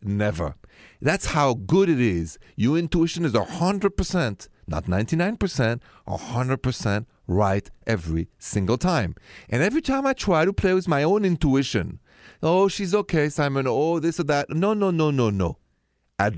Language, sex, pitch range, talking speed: English, male, 95-145 Hz, 155 wpm